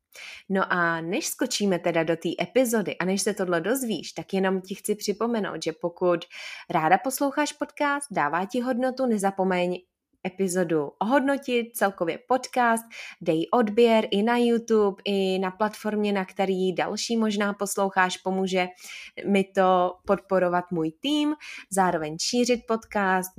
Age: 20-39